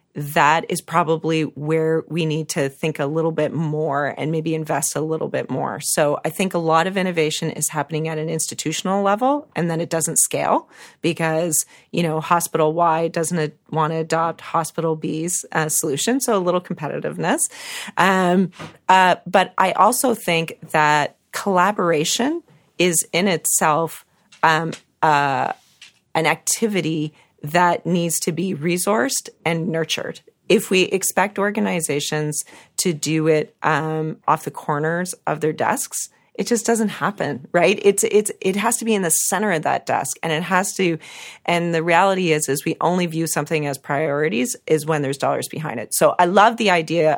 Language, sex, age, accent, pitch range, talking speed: English, female, 40-59, American, 155-185 Hz, 170 wpm